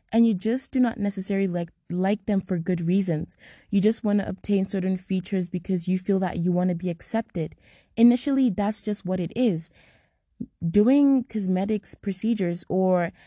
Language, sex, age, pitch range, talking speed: English, female, 20-39, 175-210 Hz, 170 wpm